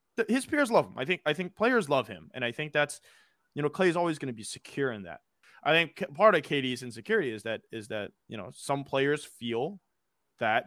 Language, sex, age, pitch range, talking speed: English, male, 20-39, 110-150 Hz, 230 wpm